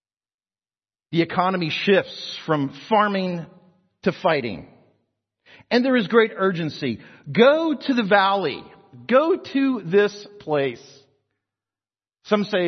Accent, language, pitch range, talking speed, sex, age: American, English, 100-140 Hz, 105 wpm, male, 40-59